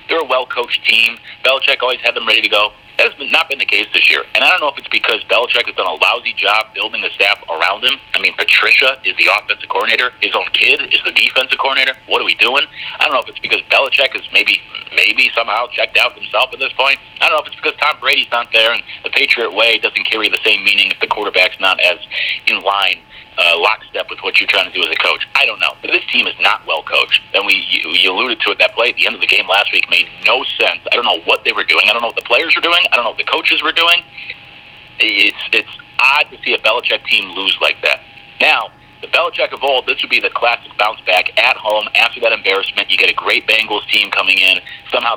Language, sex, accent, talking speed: English, male, American, 260 wpm